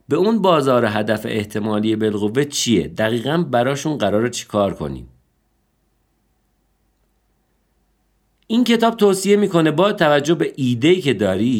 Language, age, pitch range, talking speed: Persian, 50-69, 95-140 Hz, 120 wpm